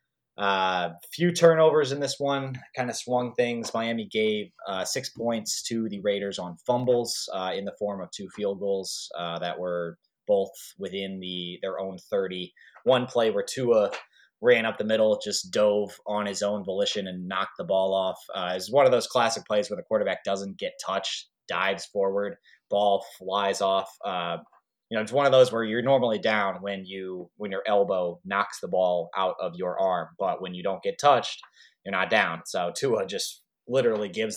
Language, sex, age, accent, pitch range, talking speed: English, male, 20-39, American, 95-115 Hz, 195 wpm